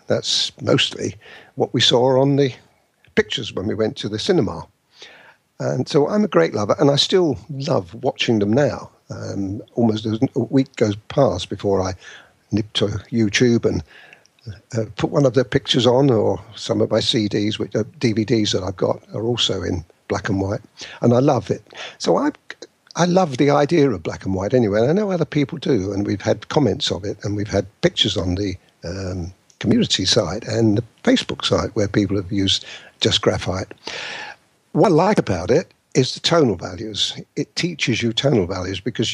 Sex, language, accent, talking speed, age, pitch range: male, English, British, 190 wpm, 50-69, 105-135 Hz